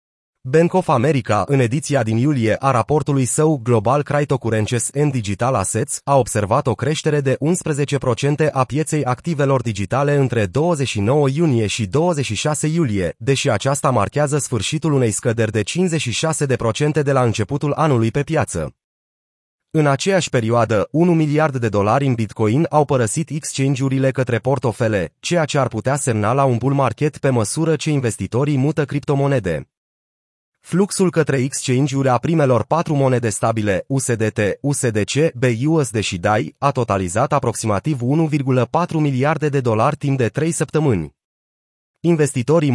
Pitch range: 115-150 Hz